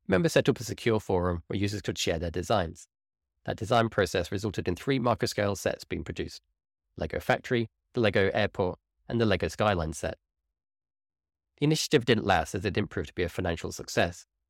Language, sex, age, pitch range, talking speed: English, male, 20-39, 80-110 Hz, 190 wpm